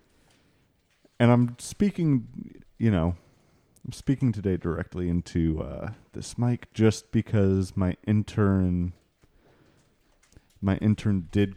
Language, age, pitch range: English, 30-49, 90-115 Hz